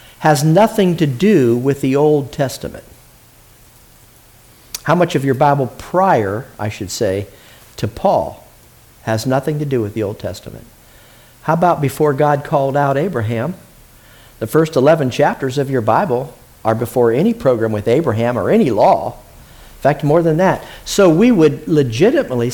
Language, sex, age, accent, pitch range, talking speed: English, male, 50-69, American, 120-160 Hz, 155 wpm